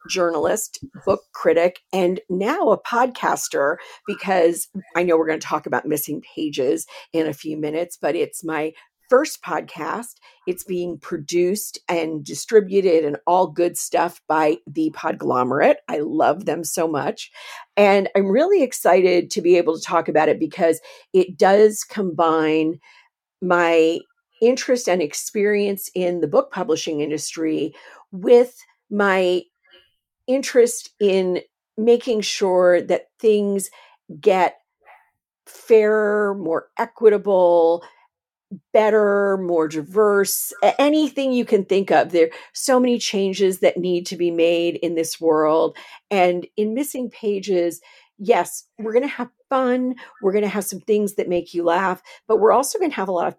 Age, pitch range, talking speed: 50-69, 170-235 Hz, 145 wpm